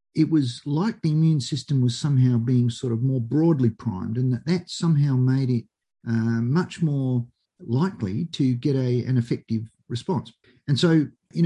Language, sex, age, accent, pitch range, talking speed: English, male, 50-69, Australian, 120-155 Hz, 175 wpm